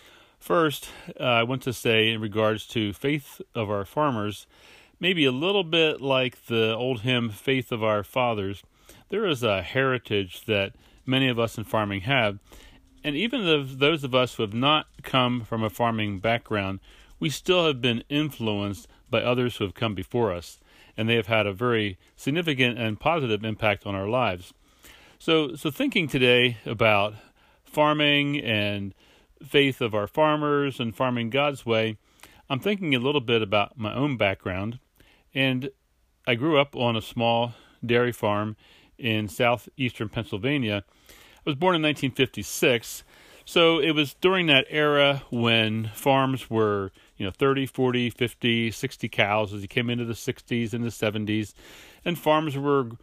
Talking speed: 165 wpm